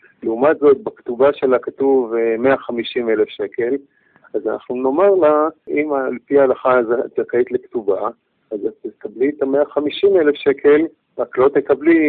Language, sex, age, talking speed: Hebrew, male, 50-69, 125 wpm